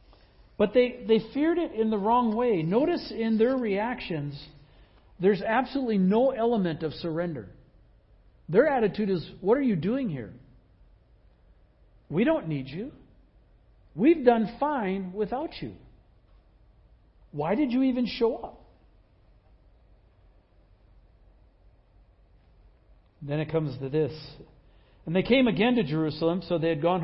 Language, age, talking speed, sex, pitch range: English, 60-79, 125 wpm, male, 160-235 Hz